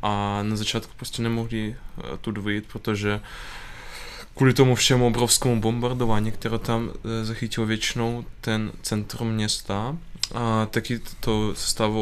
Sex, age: male, 20-39